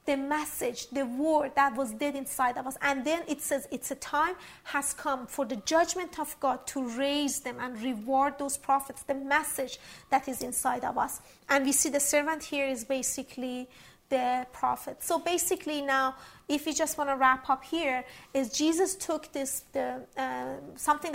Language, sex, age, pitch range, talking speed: English, female, 30-49, 260-290 Hz, 185 wpm